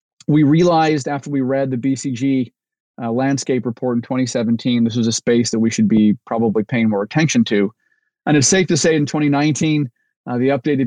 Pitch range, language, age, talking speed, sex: 125-150 Hz, English, 30-49, 195 wpm, male